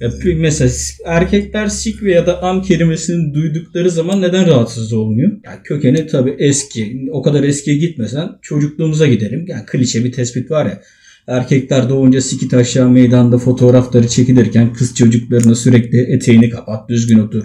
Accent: native